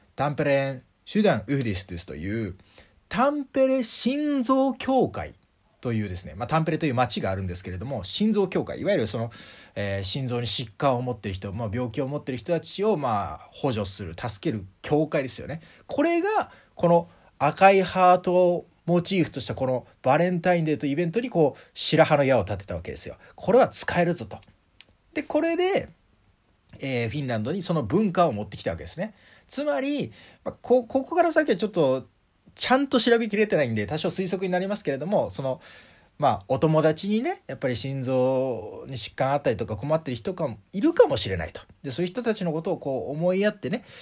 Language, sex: Japanese, male